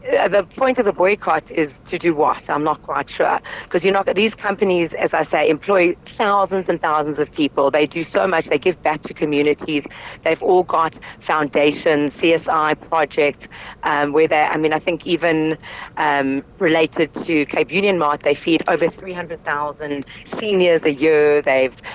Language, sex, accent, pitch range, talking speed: English, female, British, 145-180 Hz, 175 wpm